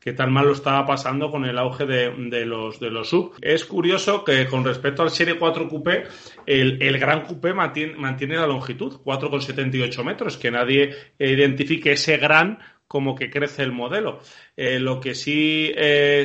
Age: 30-49